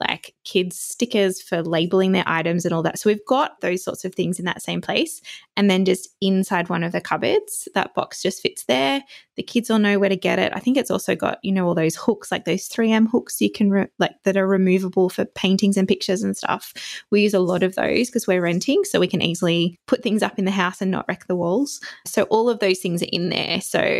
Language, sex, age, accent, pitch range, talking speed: English, female, 20-39, Australian, 175-210 Hz, 255 wpm